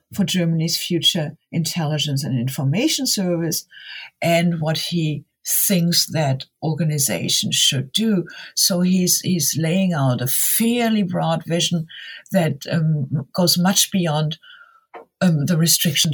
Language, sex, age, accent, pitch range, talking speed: English, female, 60-79, German, 145-190 Hz, 120 wpm